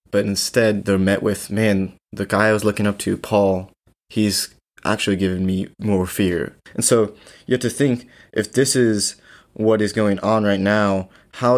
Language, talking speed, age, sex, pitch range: English, 185 wpm, 20-39, male, 100-120 Hz